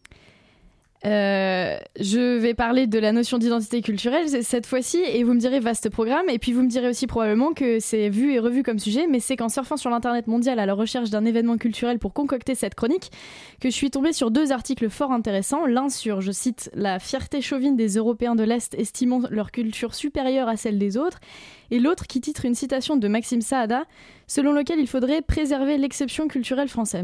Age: 20-39